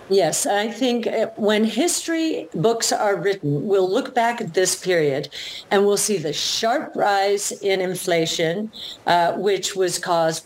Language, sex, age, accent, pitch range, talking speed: English, female, 50-69, American, 180-230 Hz, 150 wpm